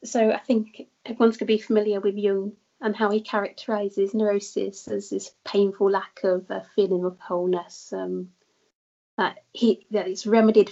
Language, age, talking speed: English, 30-49, 170 wpm